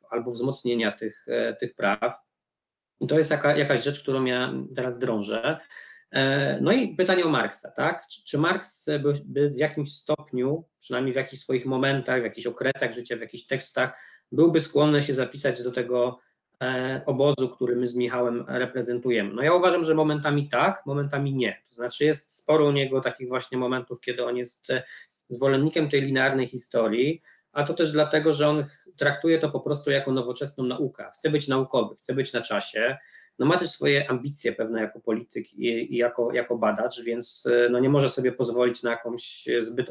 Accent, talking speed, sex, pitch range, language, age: native, 175 wpm, male, 120-145 Hz, Polish, 20-39